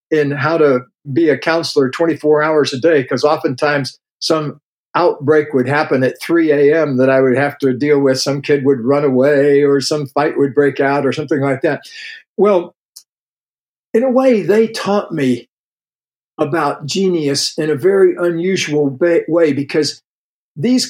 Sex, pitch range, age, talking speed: male, 140-165 Hz, 60-79, 165 wpm